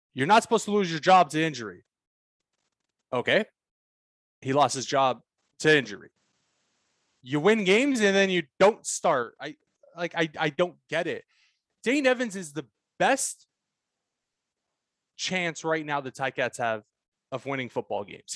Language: English